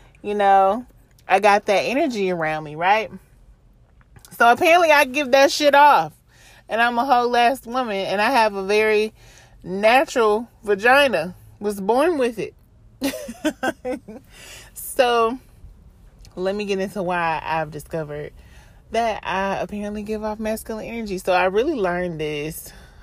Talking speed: 140 wpm